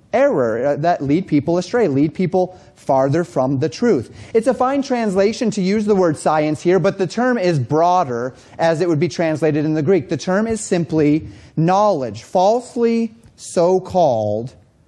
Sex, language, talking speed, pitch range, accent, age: male, English, 165 wpm, 140-190 Hz, American, 30-49